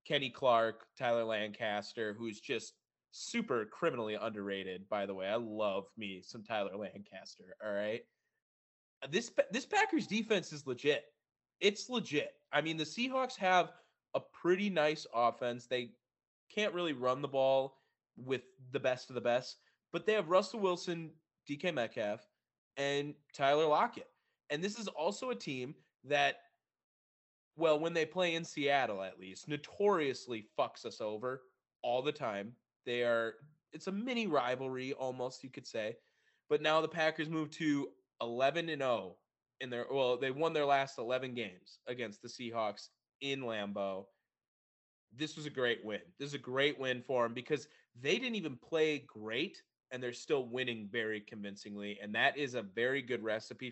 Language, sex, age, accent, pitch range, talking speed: English, male, 20-39, American, 115-155 Hz, 160 wpm